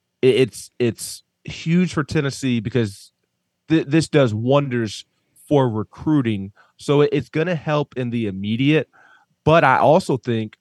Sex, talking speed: male, 135 wpm